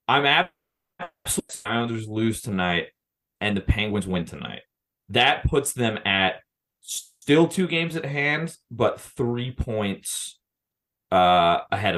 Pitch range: 95-140 Hz